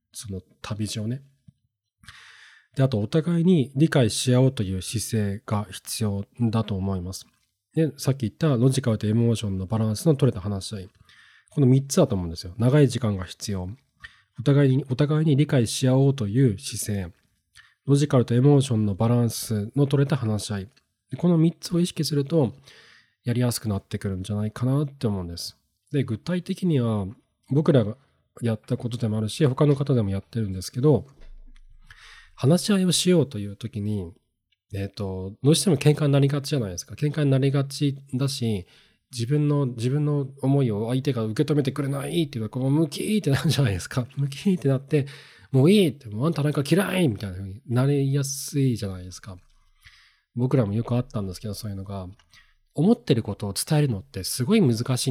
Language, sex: Japanese, male